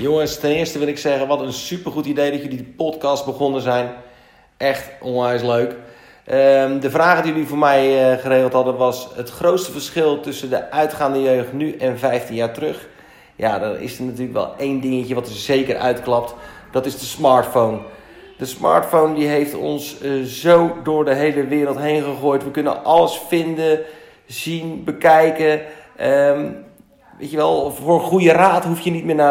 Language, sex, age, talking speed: Dutch, male, 40-59, 175 wpm